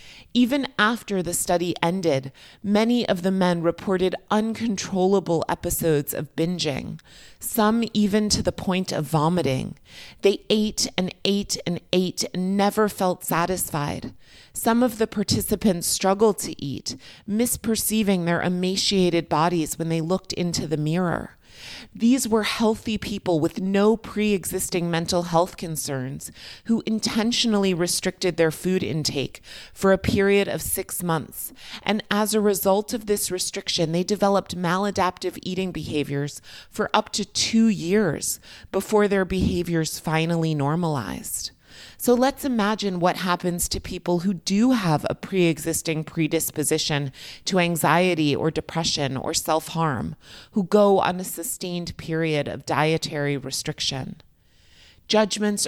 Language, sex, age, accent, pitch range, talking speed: English, female, 30-49, American, 165-205 Hz, 130 wpm